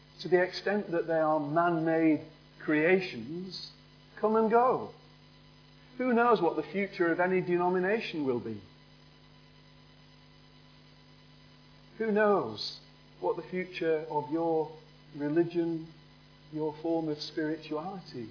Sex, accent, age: male, British, 40-59